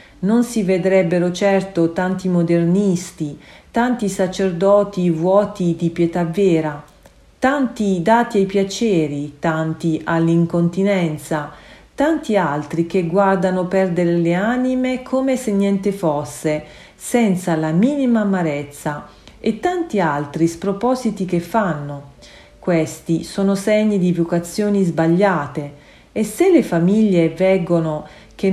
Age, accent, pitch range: 40-59, native, 160-200 Hz